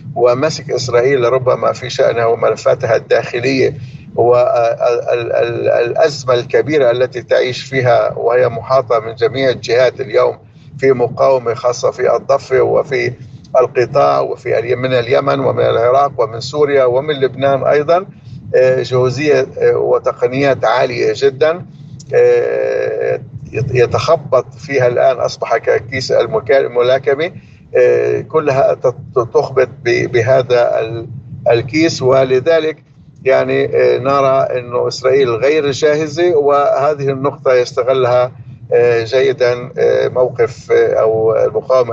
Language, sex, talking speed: Arabic, male, 90 wpm